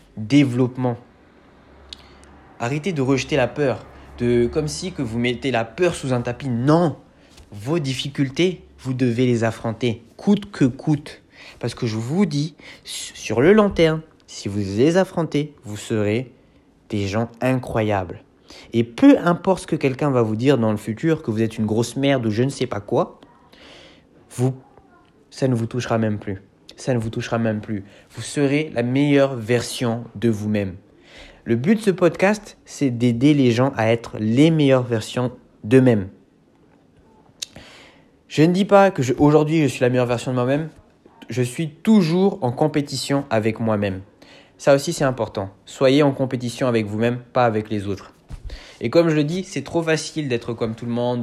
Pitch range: 115-145 Hz